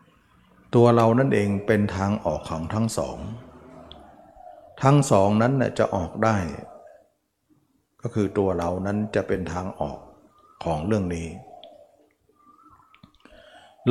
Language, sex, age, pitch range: Thai, male, 60-79, 95-120 Hz